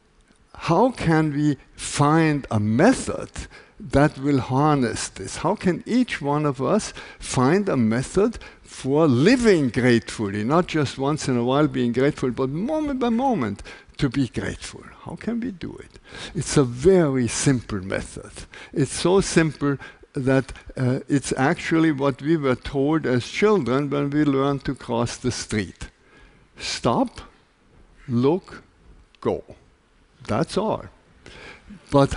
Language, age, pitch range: Chinese, 60-79, 125-165 Hz